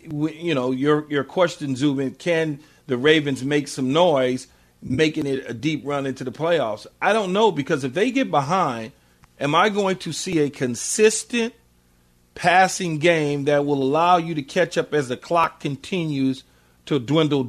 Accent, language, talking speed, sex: American, English, 175 wpm, male